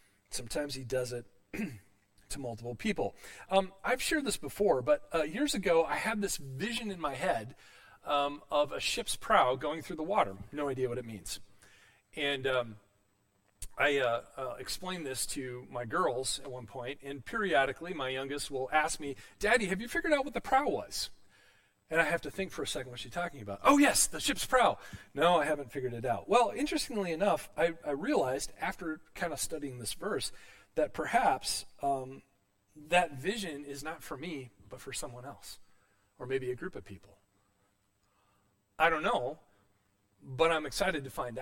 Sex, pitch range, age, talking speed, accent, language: male, 100-145 Hz, 40-59, 185 wpm, American, English